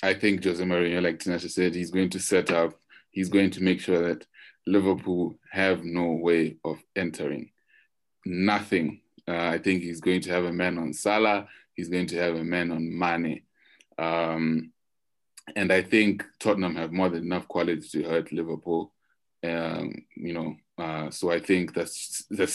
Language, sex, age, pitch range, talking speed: English, male, 20-39, 85-95 Hz, 175 wpm